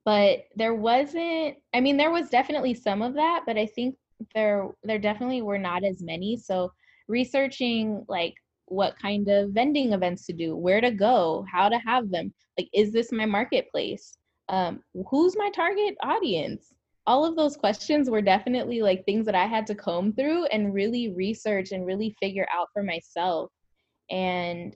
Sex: female